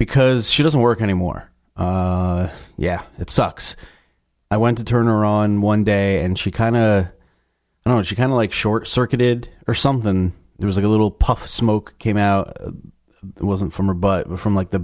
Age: 30-49